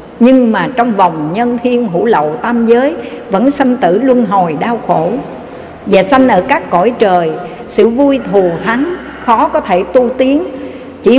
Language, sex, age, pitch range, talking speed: Vietnamese, female, 60-79, 195-265 Hz, 175 wpm